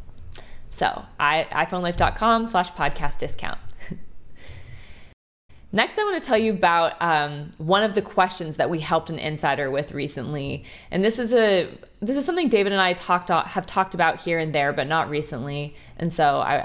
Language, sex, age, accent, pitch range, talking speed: English, female, 20-39, American, 145-180 Hz, 170 wpm